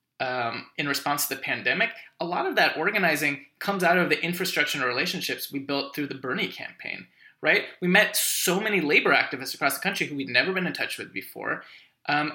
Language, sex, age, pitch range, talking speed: English, male, 20-39, 140-170 Hz, 210 wpm